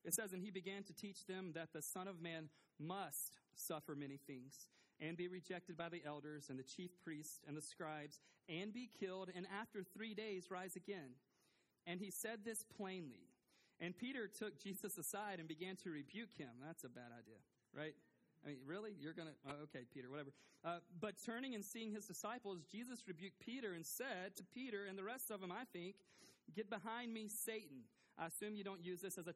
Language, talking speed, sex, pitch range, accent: English, 205 wpm, male, 165-210 Hz, American